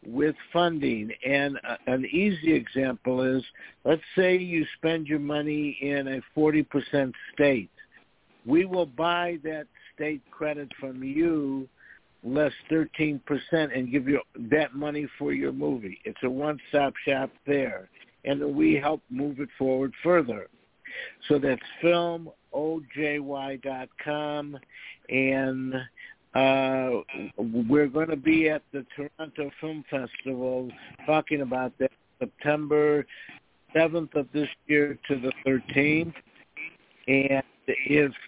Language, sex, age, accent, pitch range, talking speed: English, male, 60-79, American, 130-150 Hz, 120 wpm